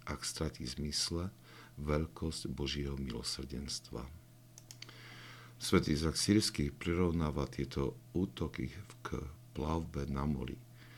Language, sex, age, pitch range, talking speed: Slovak, male, 60-79, 70-95 Hz, 85 wpm